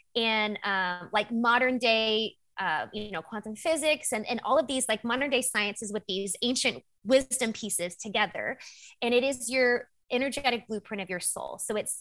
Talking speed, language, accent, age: 180 wpm, English, American, 20-39